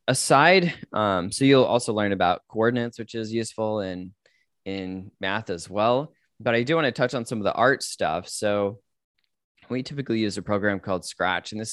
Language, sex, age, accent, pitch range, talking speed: English, male, 20-39, American, 100-125 Hz, 195 wpm